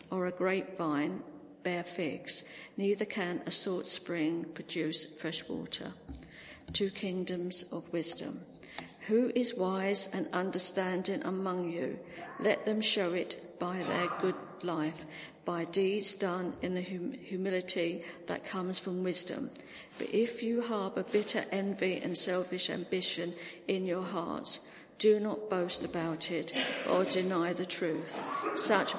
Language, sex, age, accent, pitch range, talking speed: English, female, 50-69, British, 175-195 Hz, 130 wpm